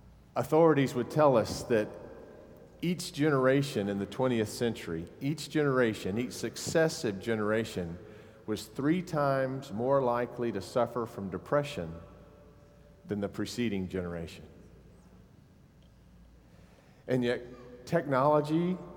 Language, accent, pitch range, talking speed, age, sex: English, American, 110-135 Hz, 100 wpm, 50-69, male